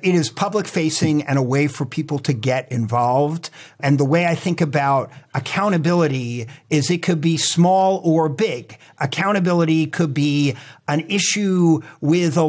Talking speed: 160 wpm